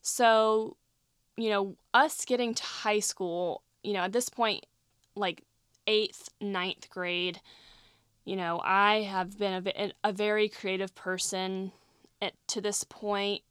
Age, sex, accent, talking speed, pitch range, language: 20-39, female, American, 140 wpm, 180-210 Hz, English